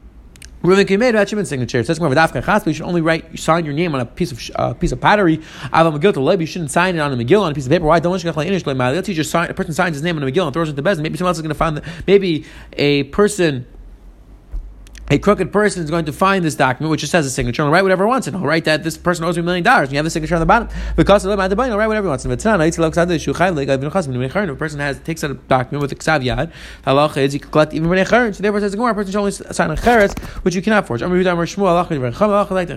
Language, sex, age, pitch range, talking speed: English, male, 30-49, 150-190 Hz, 290 wpm